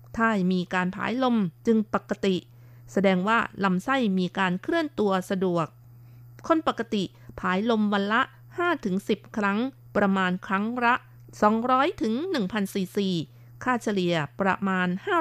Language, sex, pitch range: Thai, female, 180-235 Hz